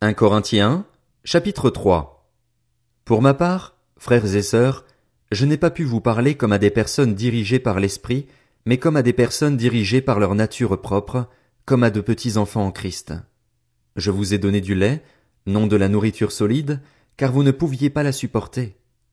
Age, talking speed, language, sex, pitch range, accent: 40-59, 180 wpm, French, male, 105-140 Hz, French